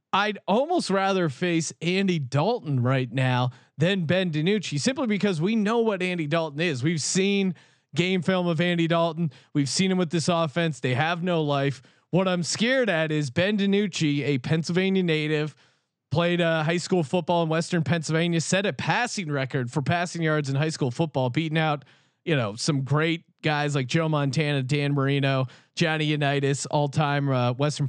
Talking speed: 180 wpm